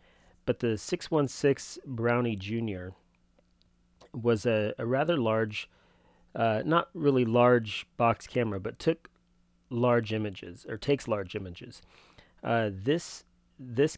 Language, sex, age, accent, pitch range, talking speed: English, male, 30-49, American, 100-120 Hz, 115 wpm